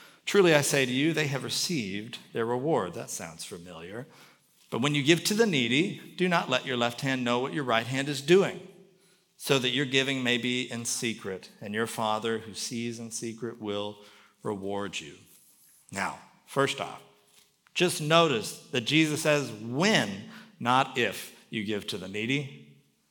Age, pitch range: 50-69, 125-165 Hz